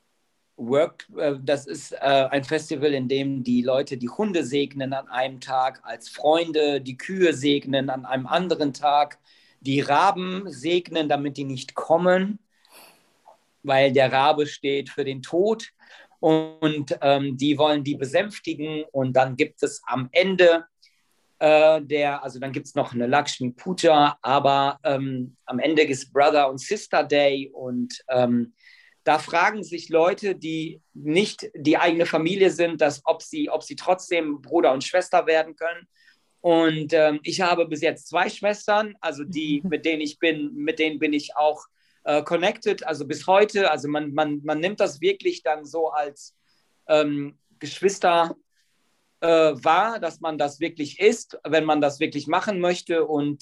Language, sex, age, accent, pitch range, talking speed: German, male, 40-59, German, 140-170 Hz, 165 wpm